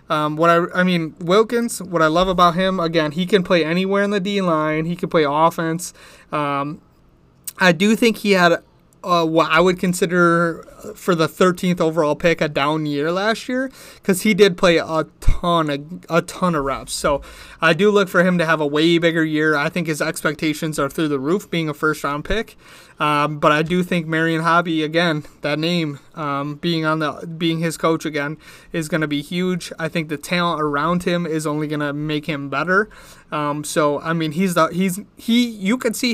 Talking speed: 210 wpm